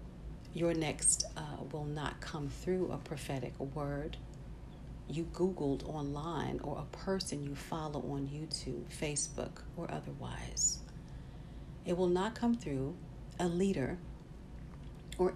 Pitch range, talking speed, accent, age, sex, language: 145-190 Hz, 120 wpm, American, 50-69, female, English